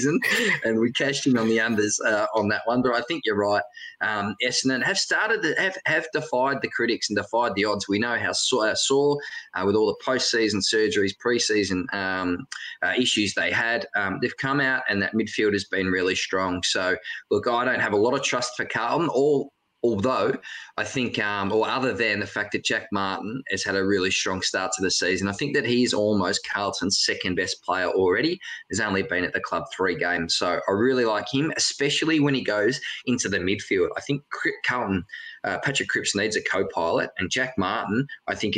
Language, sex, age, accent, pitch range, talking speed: English, male, 20-39, Australian, 95-125 Hz, 215 wpm